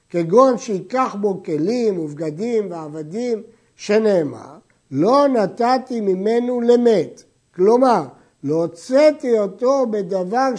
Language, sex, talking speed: Hebrew, male, 90 wpm